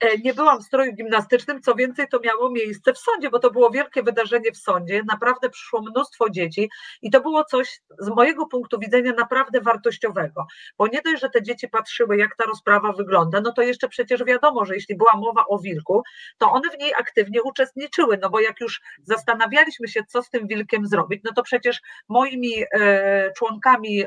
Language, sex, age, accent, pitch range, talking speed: Polish, female, 40-59, native, 205-250 Hz, 190 wpm